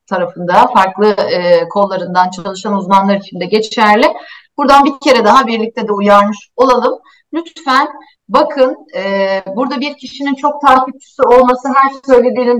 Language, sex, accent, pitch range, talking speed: Turkish, female, native, 200-270 Hz, 140 wpm